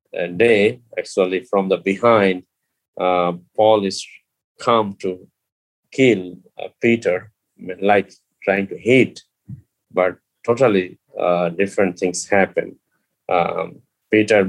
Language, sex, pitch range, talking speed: English, male, 90-110 Hz, 110 wpm